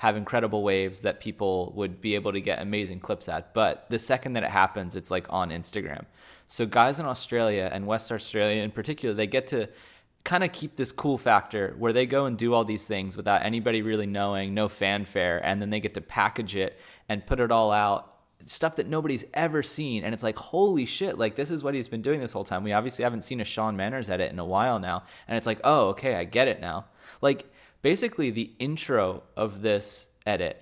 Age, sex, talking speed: 20-39, male, 225 wpm